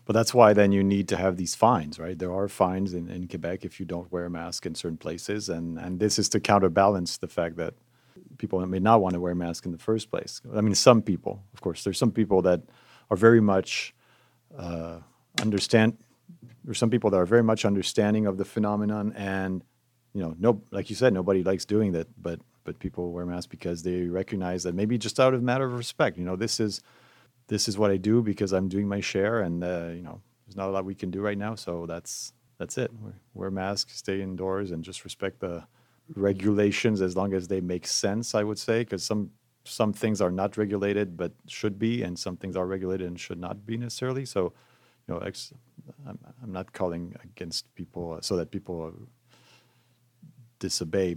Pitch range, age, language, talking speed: 90-115 Hz, 40-59, English, 215 wpm